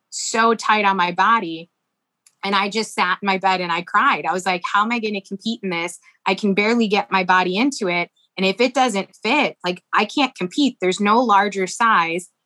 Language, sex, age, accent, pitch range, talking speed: English, female, 20-39, American, 185-225 Hz, 225 wpm